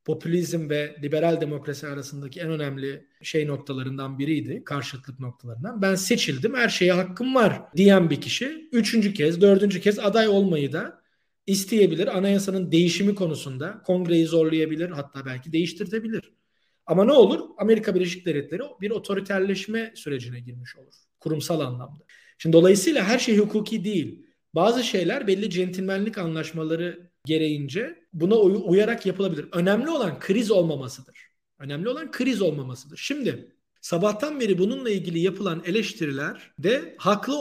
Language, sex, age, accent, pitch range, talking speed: Turkish, male, 40-59, native, 155-205 Hz, 130 wpm